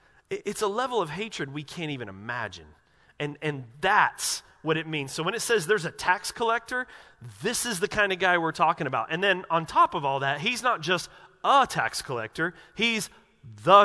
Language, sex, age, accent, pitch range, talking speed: English, male, 30-49, American, 145-200 Hz, 205 wpm